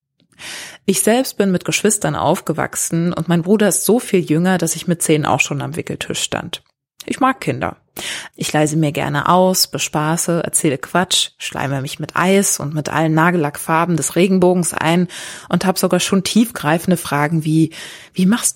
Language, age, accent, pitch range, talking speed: German, 20-39, German, 155-190 Hz, 170 wpm